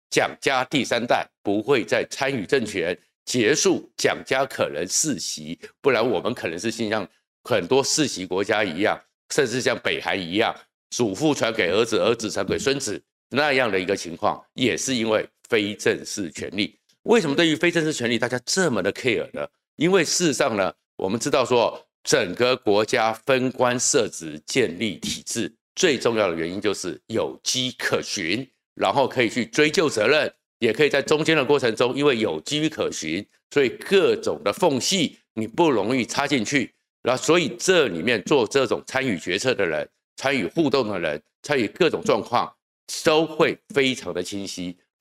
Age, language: 50-69, Chinese